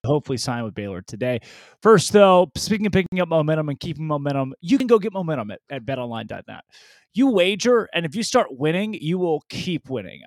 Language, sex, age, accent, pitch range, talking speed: English, male, 20-39, American, 125-185 Hz, 200 wpm